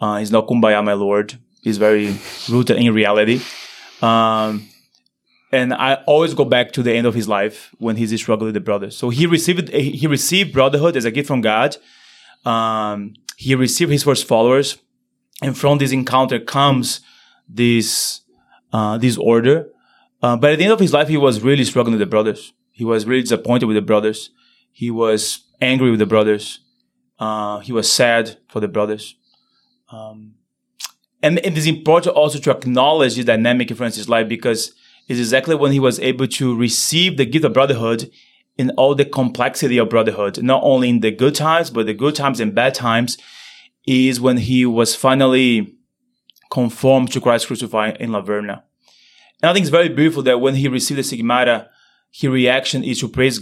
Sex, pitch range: male, 110-140 Hz